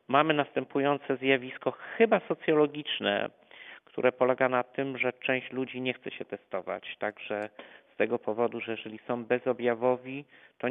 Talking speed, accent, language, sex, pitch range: 140 wpm, native, Polish, male, 110-130 Hz